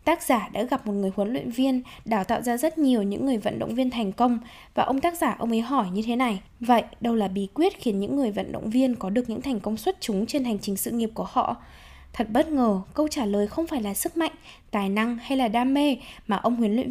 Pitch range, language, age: 215-275 Hz, Vietnamese, 10-29